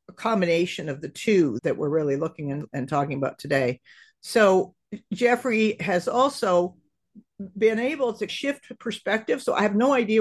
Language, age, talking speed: English, 50-69, 155 wpm